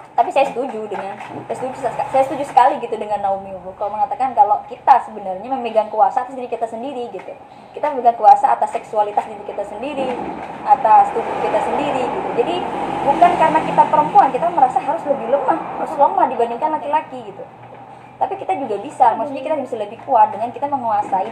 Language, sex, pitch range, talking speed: Indonesian, male, 220-300 Hz, 180 wpm